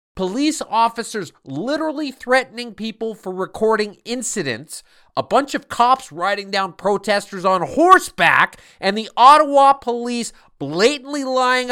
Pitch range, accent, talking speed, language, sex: 195-280 Hz, American, 120 wpm, English, male